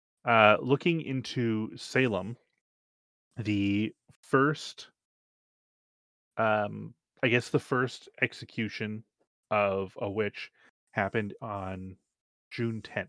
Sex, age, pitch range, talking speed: male, 30-49, 95-120 Hz, 85 wpm